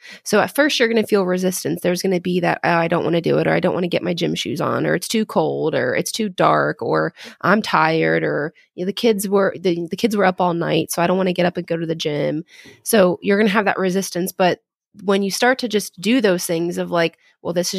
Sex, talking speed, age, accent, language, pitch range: female, 285 wpm, 20-39, American, English, 170-205 Hz